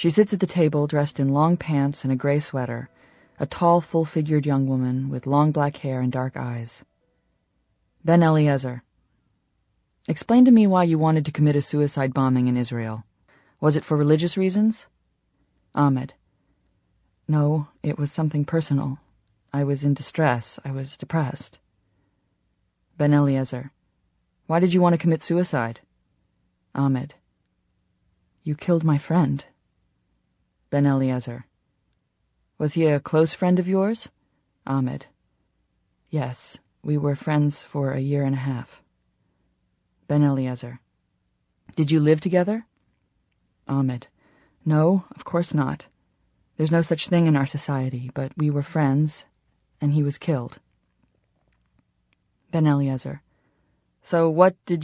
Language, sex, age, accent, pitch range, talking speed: English, female, 20-39, American, 130-160 Hz, 135 wpm